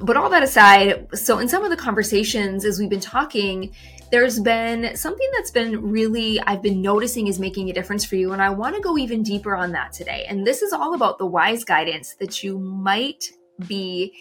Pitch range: 190-245 Hz